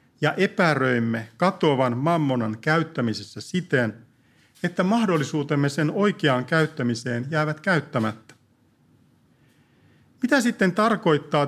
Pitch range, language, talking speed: 125-180 Hz, Finnish, 85 wpm